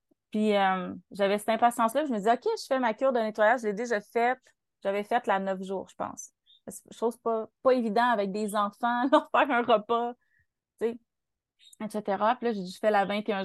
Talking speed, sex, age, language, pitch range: 220 wpm, female, 20-39, French, 195-225 Hz